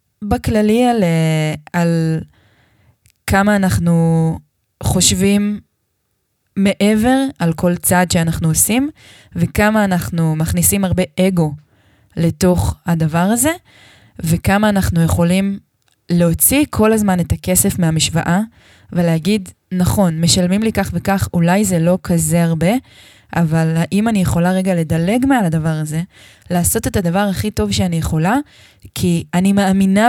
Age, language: 20-39, Hebrew